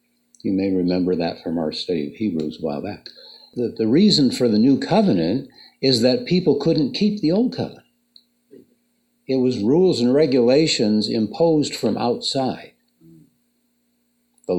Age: 60-79